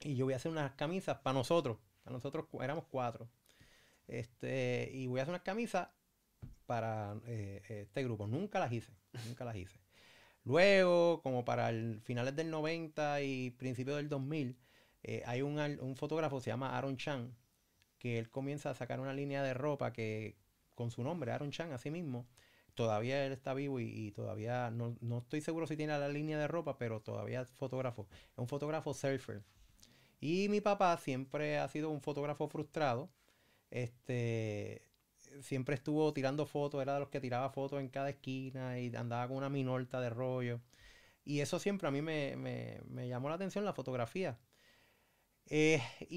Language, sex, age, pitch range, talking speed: Spanish, male, 30-49, 120-150 Hz, 175 wpm